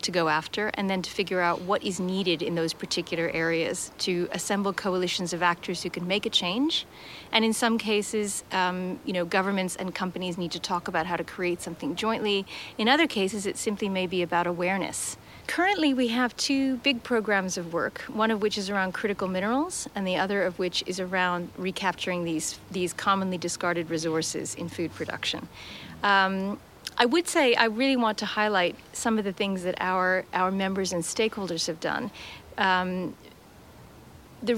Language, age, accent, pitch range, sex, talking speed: Danish, 40-59, American, 180-215 Hz, female, 185 wpm